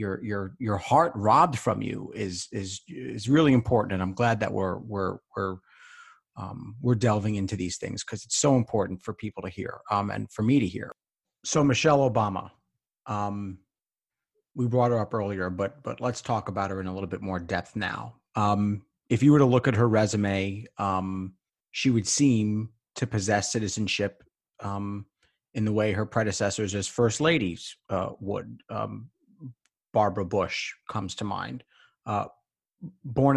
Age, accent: 40-59, American